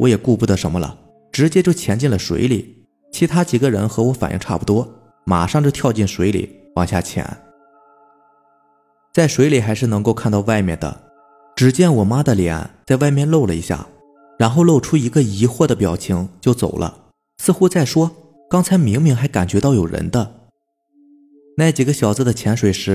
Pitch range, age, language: 100-145 Hz, 20-39, Chinese